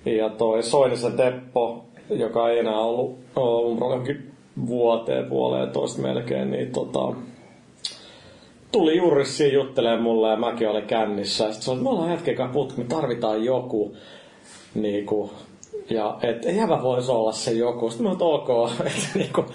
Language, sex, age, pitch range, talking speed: Finnish, male, 30-49, 110-120 Hz, 145 wpm